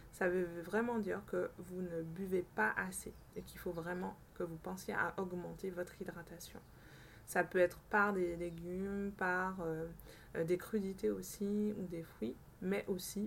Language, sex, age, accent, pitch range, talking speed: French, female, 20-39, French, 170-195 Hz, 165 wpm